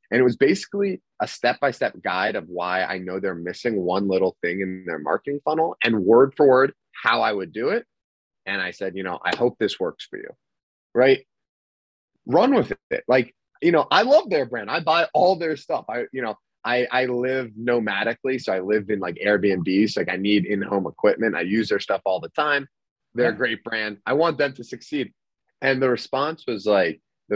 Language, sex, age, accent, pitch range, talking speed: English, male, 30-49, American, 100-140 Hz, 215 wpm